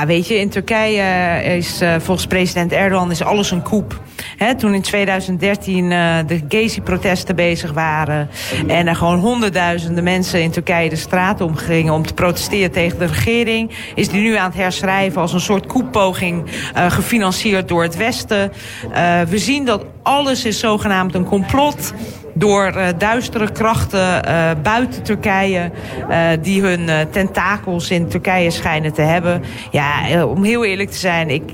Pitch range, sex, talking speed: 170-200 Hz, female, 160 wpm